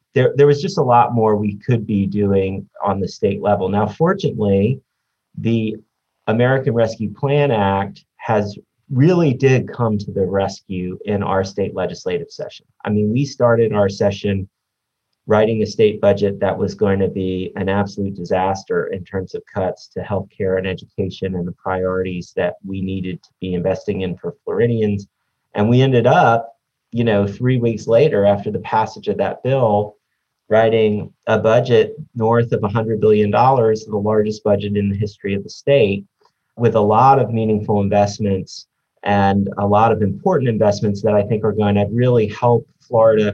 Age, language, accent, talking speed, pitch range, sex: 30-49, English, American, 170 wpm, 100-115 Hz, male